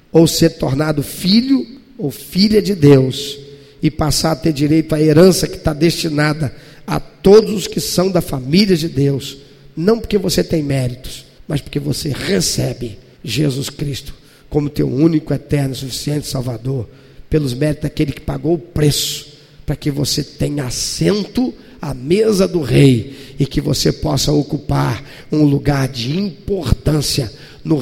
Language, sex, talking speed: Portuguese, male, 150 wpm